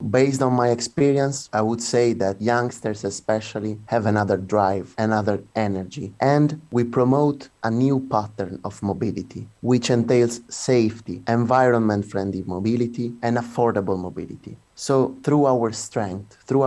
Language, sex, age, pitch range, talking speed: English, male, 30-49, 100-120 Hz, 130 wpm